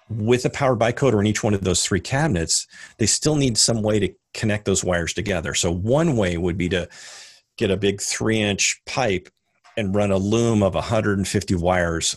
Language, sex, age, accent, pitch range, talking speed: English, male, 40-59, American, 90-105 Hz, 190 wpm